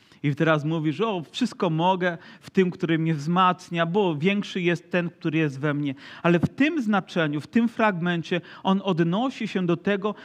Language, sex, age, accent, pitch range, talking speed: Polish, male, 40-59, native, 175-220 Hz, 180 wpm